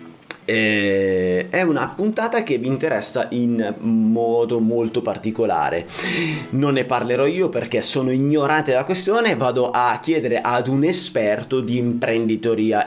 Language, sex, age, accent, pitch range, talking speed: Italian, male, 30-49, native, 115-165 Hz, 125 wpm